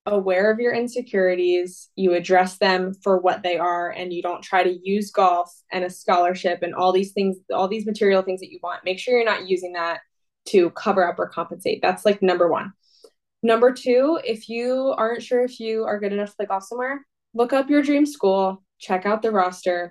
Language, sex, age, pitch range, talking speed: English, female, 20-39, 185-215 Hz, 215 wpm